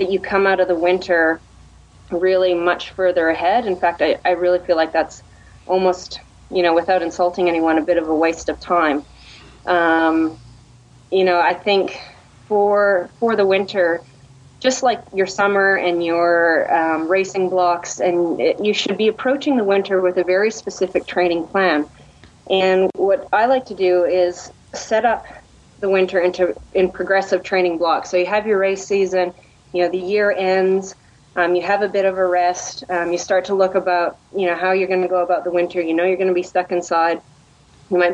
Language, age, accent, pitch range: English, 30-49, American, 170-190 Hz